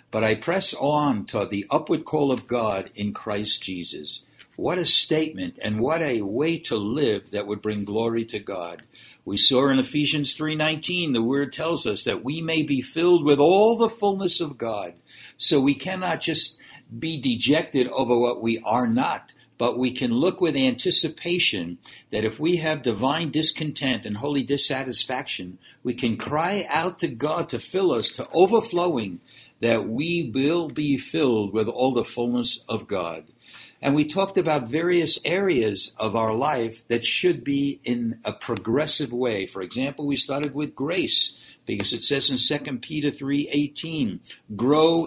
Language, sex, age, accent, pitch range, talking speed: English, male, 60-79, American, 115-155 Hz, 170 wpm